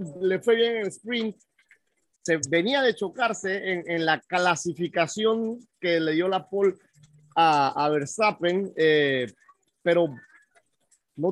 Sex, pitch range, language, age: male, 155-210 Hz, English, 30-49